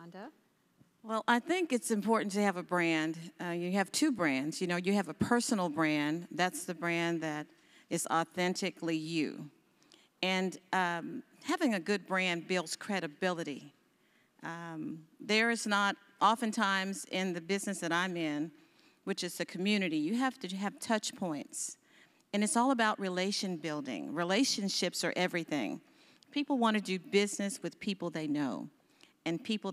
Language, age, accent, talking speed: English, 50-69, American, 155 wpm